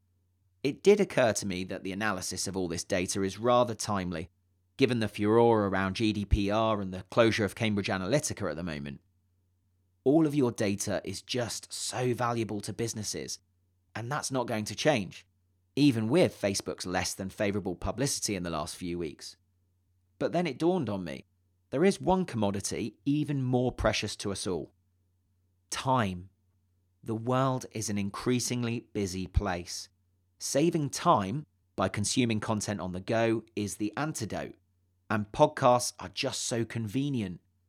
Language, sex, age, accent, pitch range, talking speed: English, male, 30-49, British, 90-115 Hz, 155 wpm